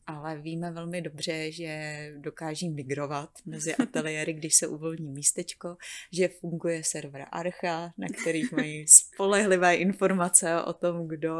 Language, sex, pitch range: Czech, female, 155-170 Hz